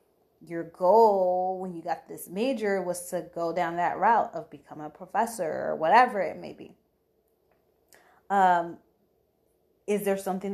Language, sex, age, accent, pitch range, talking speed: English, female, 30-49, American, 170-210 Hz, 150 wpm